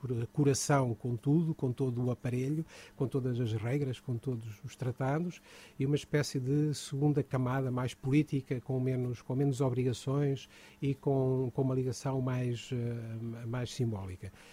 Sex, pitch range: male, 130-155 Hz